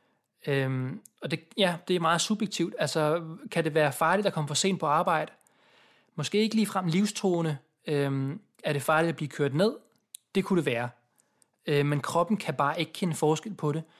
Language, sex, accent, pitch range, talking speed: Danish, male, native, 140-180 Hz, 195 wpm